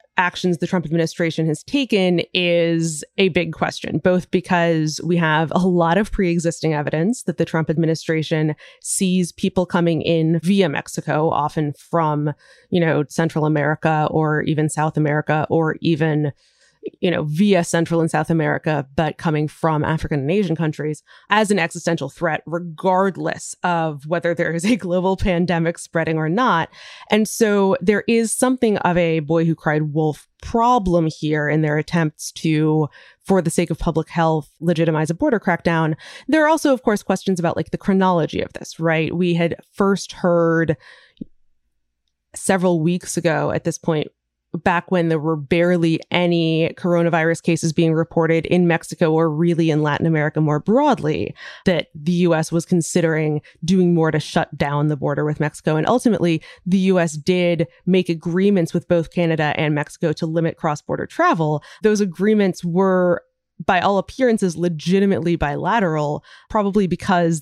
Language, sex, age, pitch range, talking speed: English, female, 20-39, 155-180 Hz, 160 wpm